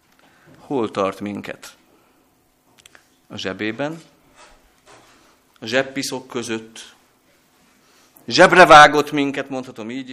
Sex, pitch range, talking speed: male, 110-145 Hz, 75 wpm